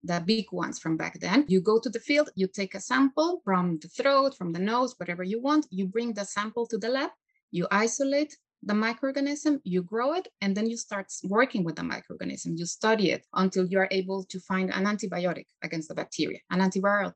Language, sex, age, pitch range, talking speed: English, female, 30-49, 185-245 Hz, 215 wpm